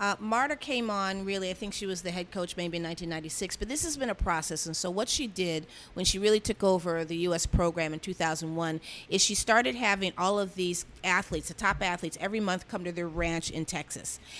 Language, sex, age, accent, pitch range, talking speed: English, female, 40-59, American, 175-210 Hz, 230 wpm